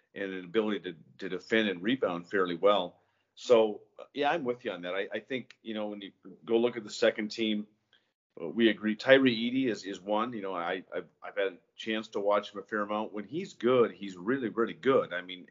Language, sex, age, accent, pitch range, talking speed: English, male, 40-59, American, 100-115 Hz, 230 wpm